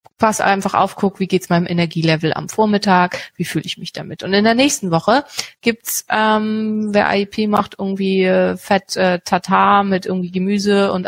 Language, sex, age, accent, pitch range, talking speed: German, female, 30-49, German, 180-220 Hz, 185 wpm